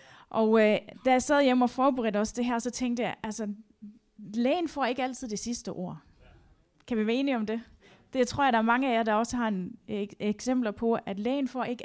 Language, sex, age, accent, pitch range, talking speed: Danish, female, 30-49, native, 205-255 Hz, 245 wpm